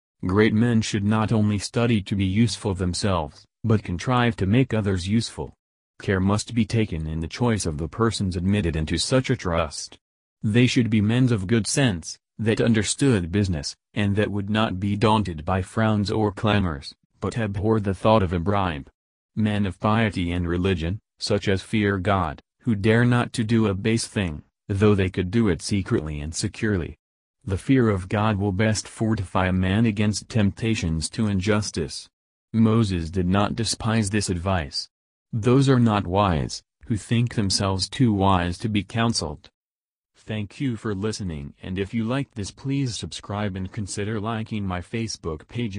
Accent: American